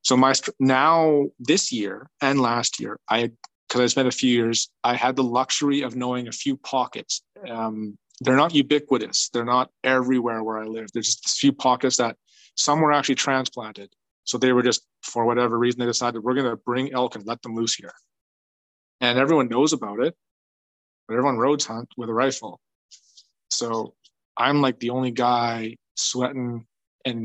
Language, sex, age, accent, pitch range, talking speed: English, male, 30-49, American, 115-130 Hz, 185 wpm